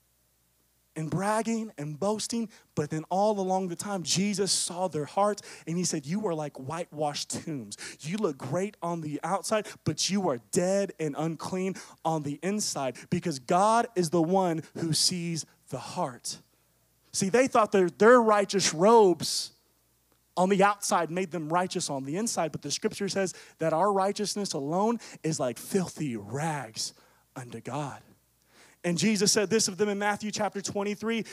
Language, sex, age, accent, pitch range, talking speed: English, male, 30-49, American, 155-210 Hz, 165 wpm